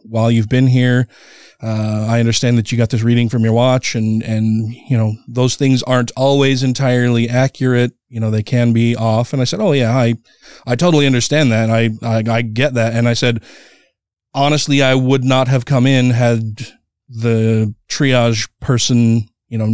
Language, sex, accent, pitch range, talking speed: English, male, American, 115-140 Hz, 190 wpm